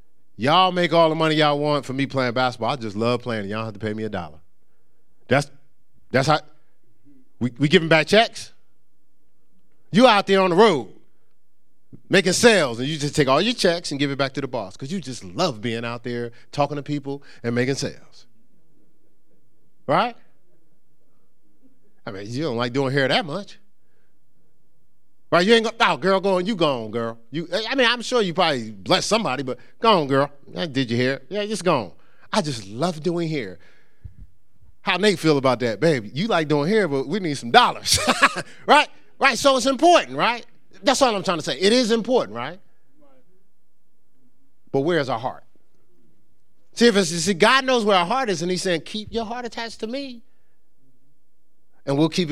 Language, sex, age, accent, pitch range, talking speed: English, male, 30-49, American, 130-205 Hz, 195 wpm